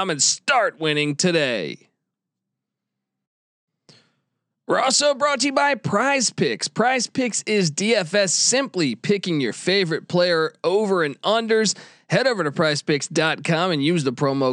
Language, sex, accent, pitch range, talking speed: English, male, American, 160-210 Hz, 130 wpm